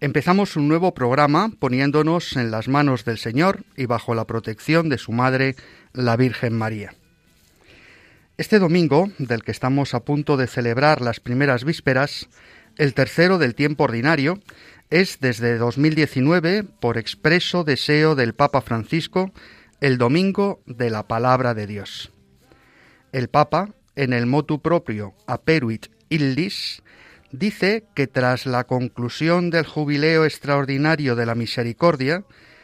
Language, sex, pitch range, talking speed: Spanish, male, 120-165 Hz, 130 wpm